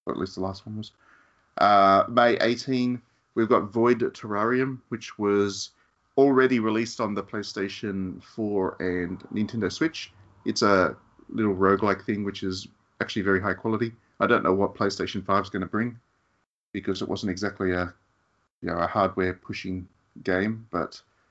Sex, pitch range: male, 95-120 Hz